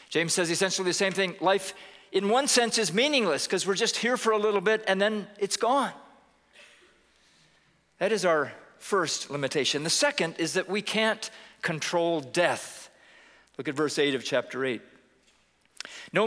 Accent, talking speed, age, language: American, 165 wpm, 50-69, English